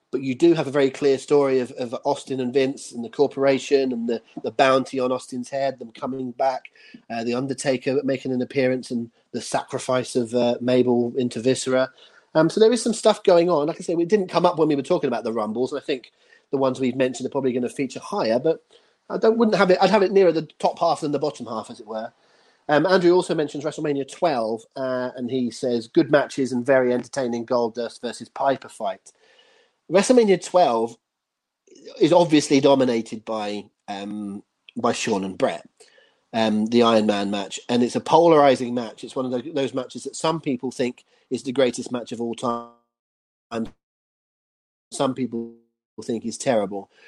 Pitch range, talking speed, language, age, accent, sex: 115-145 Hz, 205 wpm, English, 30-49, British, male